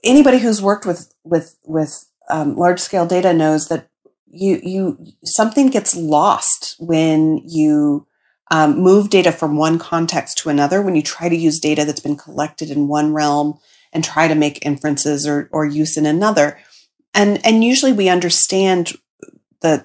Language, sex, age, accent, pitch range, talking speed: English, female, 30-49, American, 150-190 Hz, 165 wpm